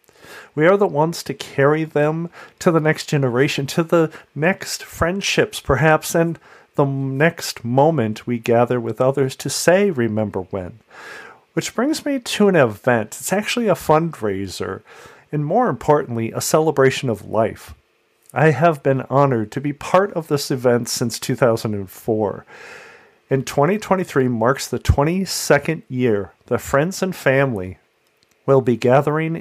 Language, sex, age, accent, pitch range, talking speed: English, male, 40-59, American, 115-155 Hz, 145 wpm